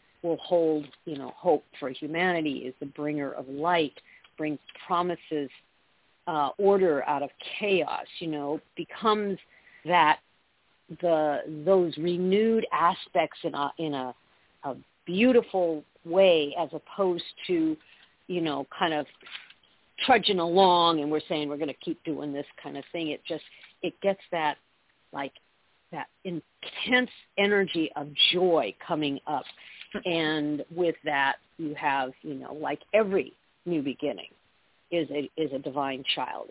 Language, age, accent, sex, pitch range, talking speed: English, 50-69, American, female, 145-180 Hz, 140 wpm